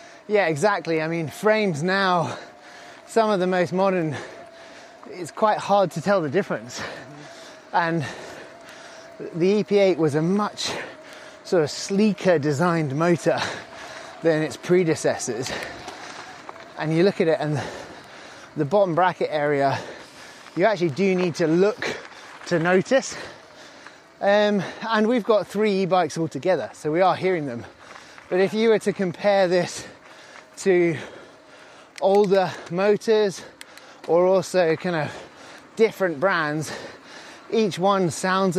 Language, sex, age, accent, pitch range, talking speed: English, male, 20-39, British, 165-205 Hz, 125 wpm